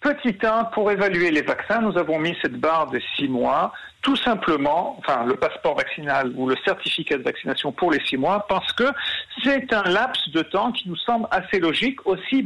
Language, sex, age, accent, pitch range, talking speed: French, male, 50-69, French, 155-225 Hz, 200 wpm